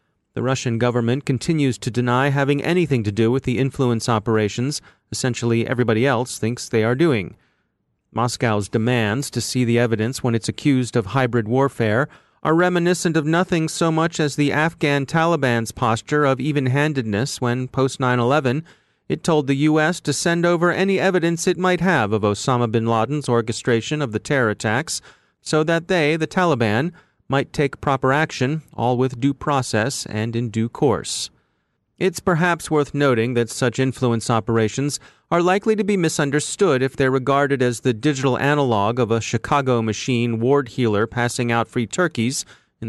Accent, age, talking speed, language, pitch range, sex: American, 30-49, 165 wpm, English, 120-150 Hz, male